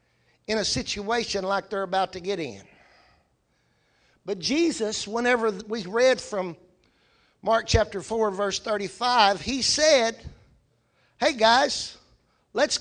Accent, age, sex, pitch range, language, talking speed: American, 60-79, male, 205-285 Hz, English, 115 wpm